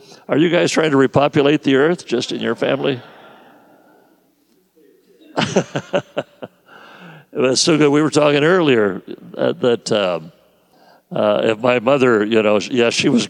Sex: male